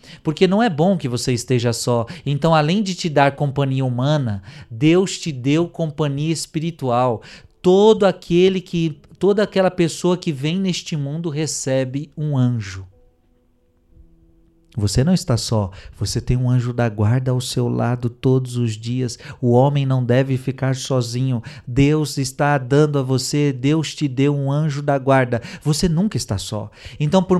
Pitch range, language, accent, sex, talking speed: 120-180 Hz, Portuguese, Brazilian, male, 155 wpm